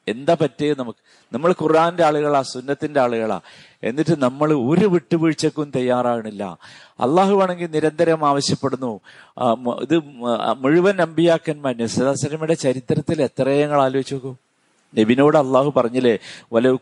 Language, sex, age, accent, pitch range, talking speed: Malayalam, male, 50-69, native, 120-180 Hz, 100 wpm